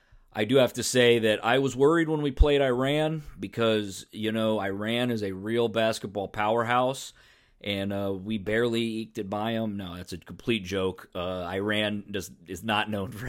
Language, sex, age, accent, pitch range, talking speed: English, male, 30-49, American, 95-140 Hz, 190 wpm